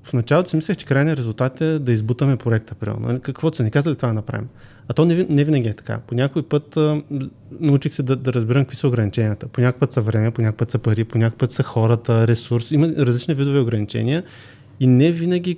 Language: Bulgarian